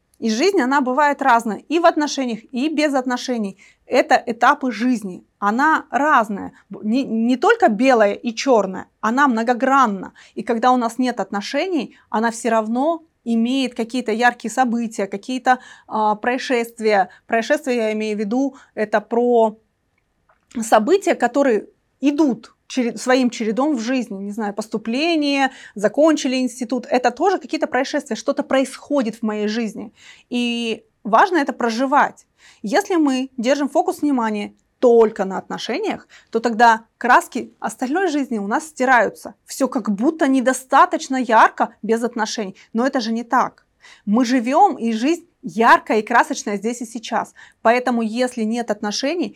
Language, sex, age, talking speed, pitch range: Russian, female, 20-39, 140 wpm, 225-280 Hz